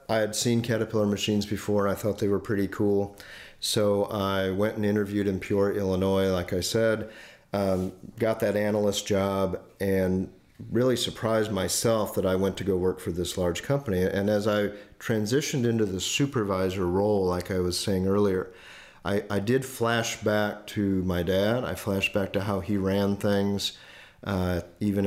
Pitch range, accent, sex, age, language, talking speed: 95-110 Hz, American, male, 40-59, English, 170 wpm